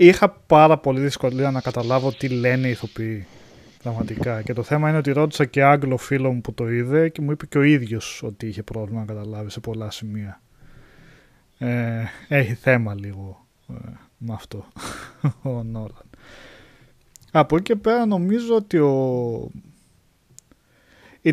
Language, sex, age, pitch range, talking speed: Greek, male, 20-39, 115-150 Hz, 150 wpm